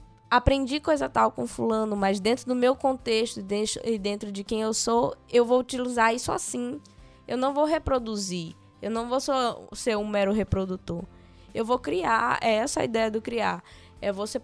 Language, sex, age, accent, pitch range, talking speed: Portuguese, female, 10-29, Brazilian, 205-255 Hz, 185 wpm